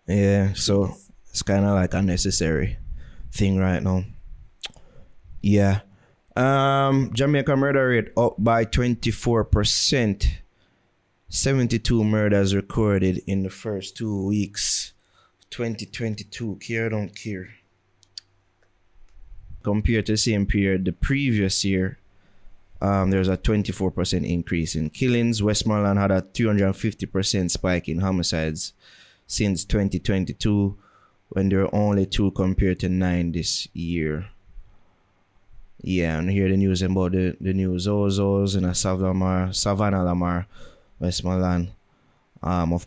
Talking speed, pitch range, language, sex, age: 120 wpm, 90-105 Hz, English, male, 20-39